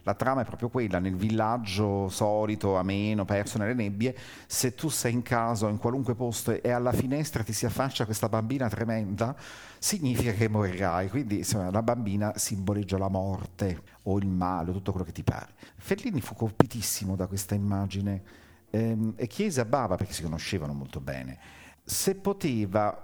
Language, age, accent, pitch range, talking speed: Italian, 50-69, native, 95-115 Hz, 175 wpm